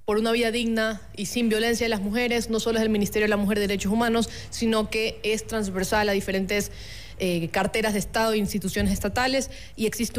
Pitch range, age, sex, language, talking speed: 195-225 Hz, 20-39, female, Spanish, 210 wpm